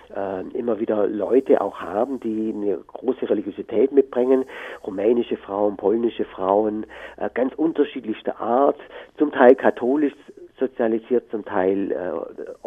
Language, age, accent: German, 50-69, German